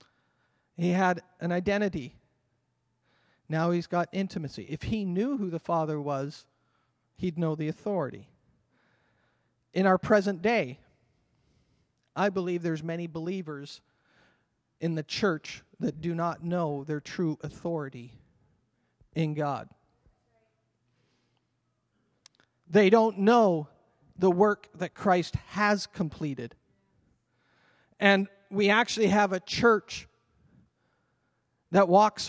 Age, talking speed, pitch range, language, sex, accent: 40-59, 105 wpm, 155-200 Hz, English, male, American